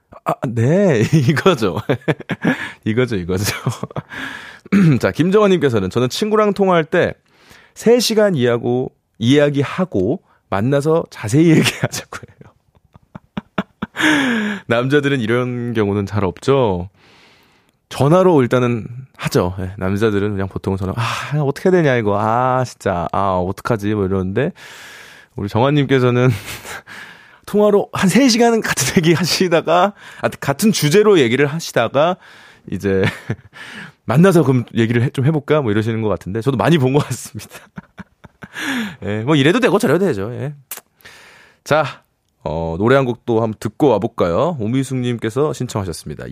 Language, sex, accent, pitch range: Korean, male, native, 105-155 Hz